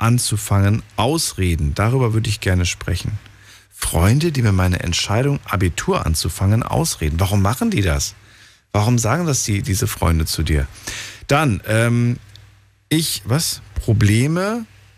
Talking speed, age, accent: 130 wpm, 50-69, German